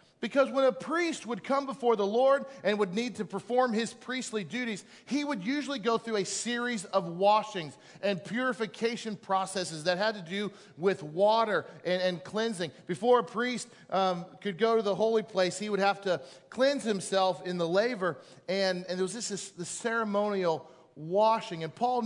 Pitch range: 180-235 Hz